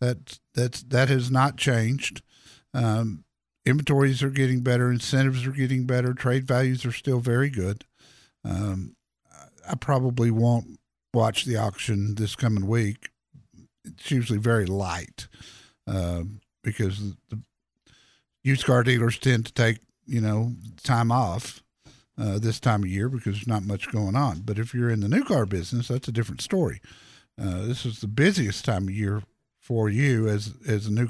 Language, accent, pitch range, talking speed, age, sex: English, American, 110-140 Hz, 165 wpm, 50-69, male